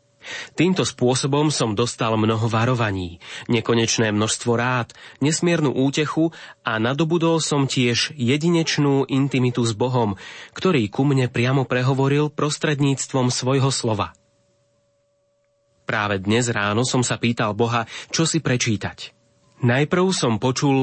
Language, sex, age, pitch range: Slovak, male, 30-49, 115-140 Hz